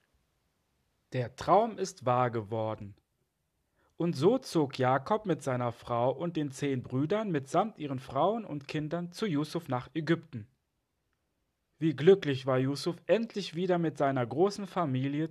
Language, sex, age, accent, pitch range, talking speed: German, male, 40-59, German, 130-185 Hz, 135 wpm